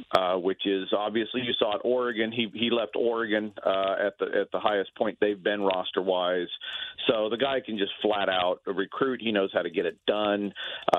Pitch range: 100-135 Hz